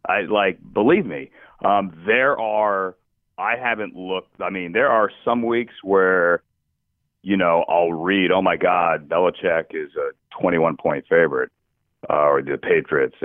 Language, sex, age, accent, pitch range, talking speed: English, male, 40-59, American, 90-110 Hz, 150 wpm